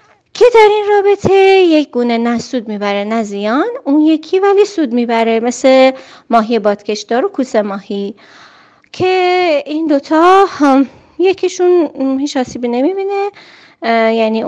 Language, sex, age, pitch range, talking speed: Persian, female, 30-49, 225-325 Hz, 120 wpm